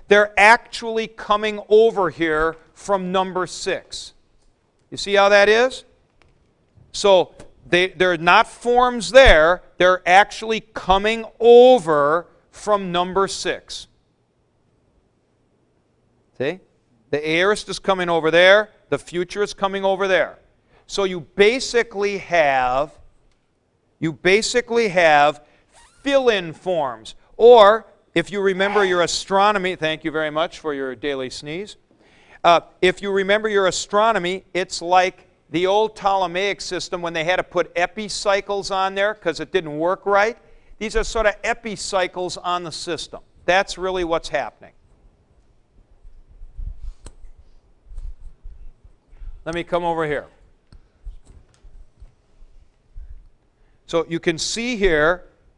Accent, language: American, English